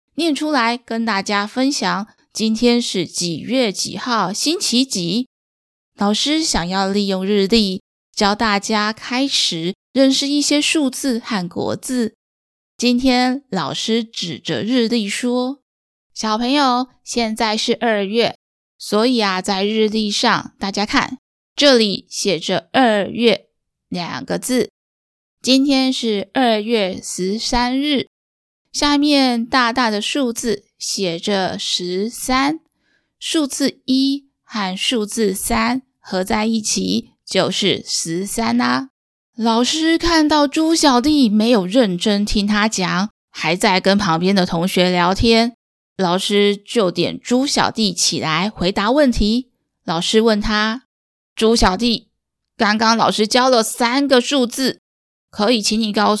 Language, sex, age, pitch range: Chinese, female, 20-39, 205-255 Hz